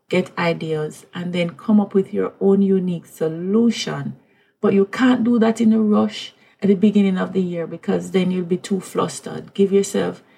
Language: English